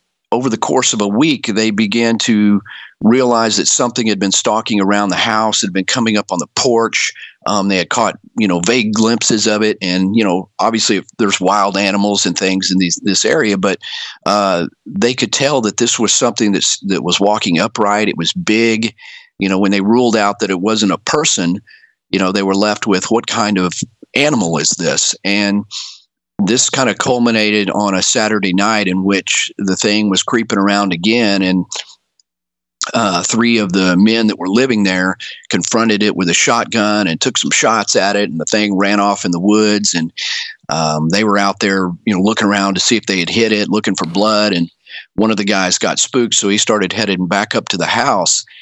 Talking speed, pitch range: 205 wpm, 95-110 Hz